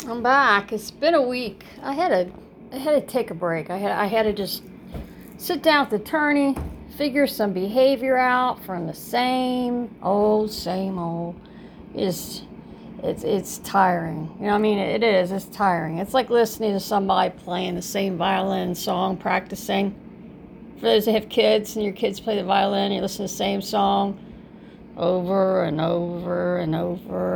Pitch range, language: 180-230 Hz, English